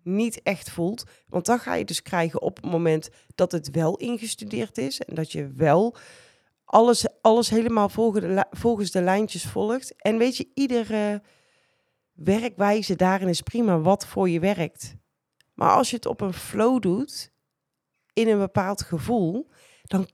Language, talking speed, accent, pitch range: Dutch, 160 wpm, Dutch, 160-220 Hz